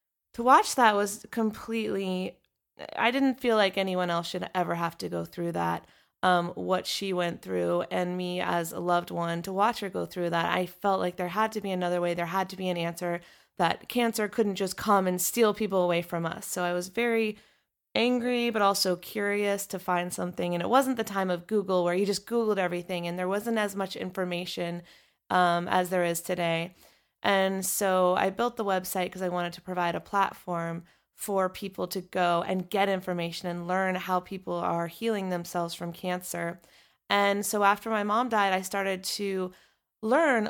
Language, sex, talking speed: English, female, 200 wpm